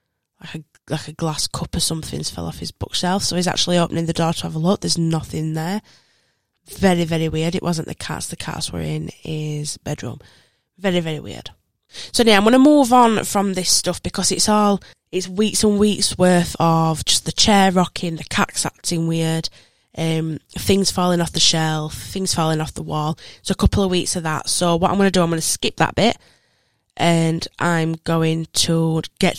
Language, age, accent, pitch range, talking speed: English, 10-29, British, 155-185 Hz, 210 wpm